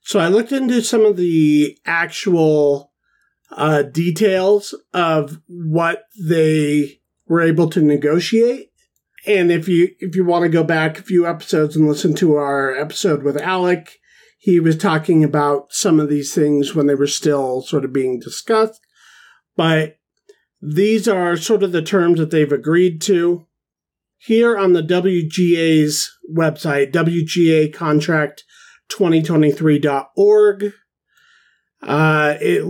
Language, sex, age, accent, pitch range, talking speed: English, male, 40-59, American, 155-195 Hz, 130 wpm